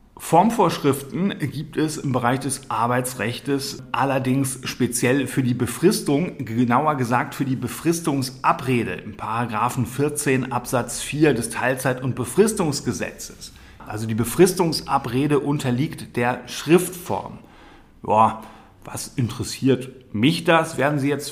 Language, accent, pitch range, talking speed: German, German, 120-145 Hz, 115 wpm